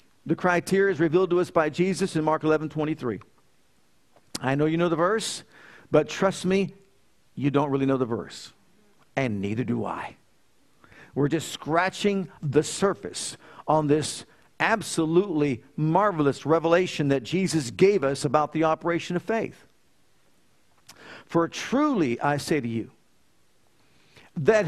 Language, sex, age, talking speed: English, male, 50-69, 145 wpm